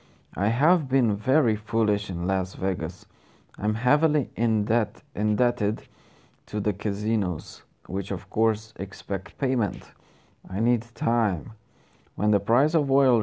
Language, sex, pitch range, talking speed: Romanian, male, 95-120 Hz, 130 wpm